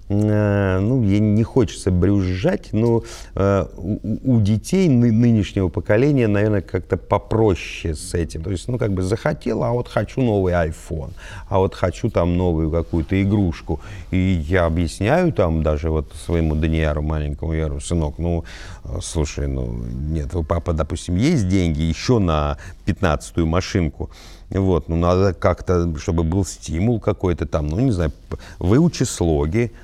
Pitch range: 80-100 Hz